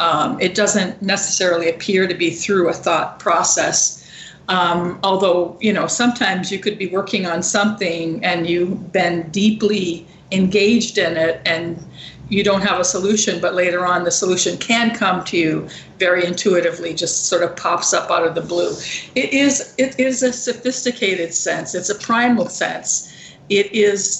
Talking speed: 170 wpm